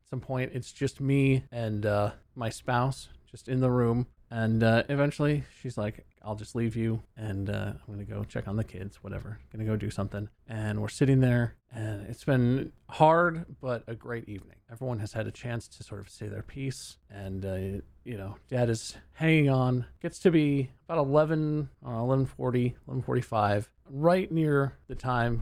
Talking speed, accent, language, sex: 190 wpm, American, English, male